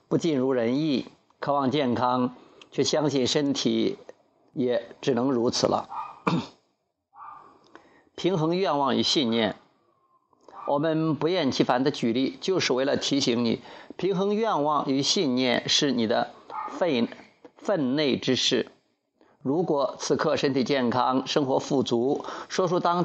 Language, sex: Chinese, male